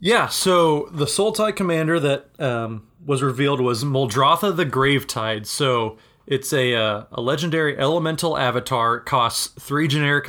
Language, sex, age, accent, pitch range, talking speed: English, male, 30-49, American, 120-150 Hz, 150 wpm